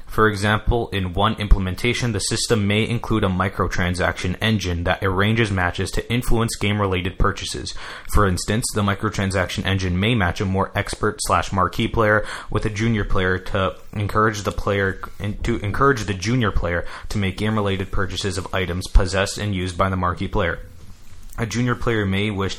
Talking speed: 165 wpm